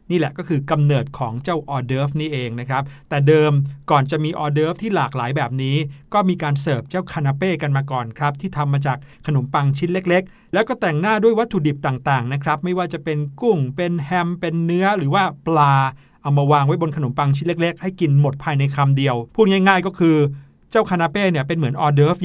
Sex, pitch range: male, 140-175 Hz